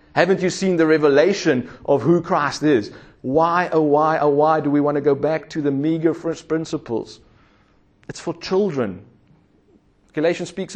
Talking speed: 165 wpm